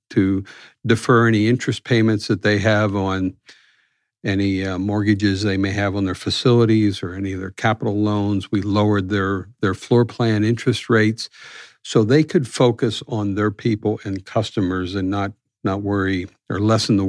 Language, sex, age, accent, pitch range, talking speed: English, male, 50-69, American, 100-120 Hz, 170 wpm